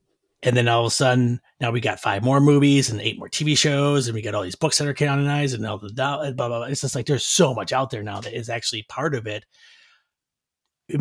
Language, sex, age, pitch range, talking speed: English, male, 30-49, 125-160 Hz, 260 wpm